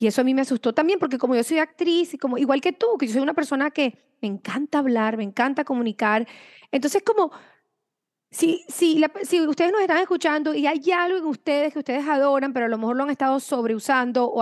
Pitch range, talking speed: 230-290 Hz, 235 wpm